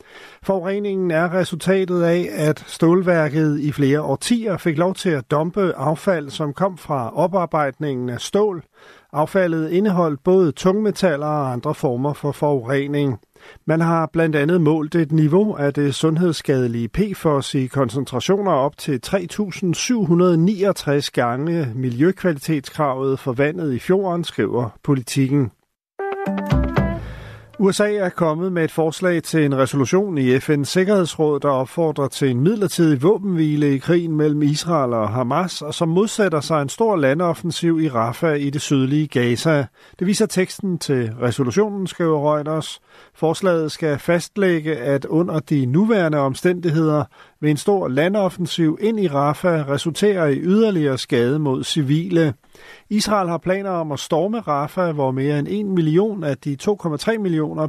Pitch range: 140-180 Hz